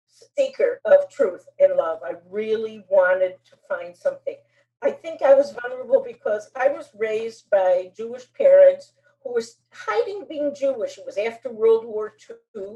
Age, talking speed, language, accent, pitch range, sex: 50-69, 160 wpm, English, American, 220-295 Hz, female